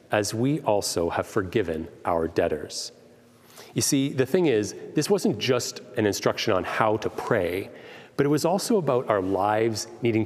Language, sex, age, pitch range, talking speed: English, male, 40-59, 95-130 Hz, 170 wpm